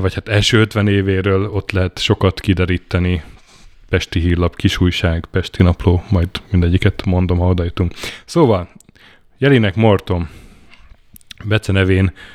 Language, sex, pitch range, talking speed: Hungarian, male, 90-105 Hz, 110 wpm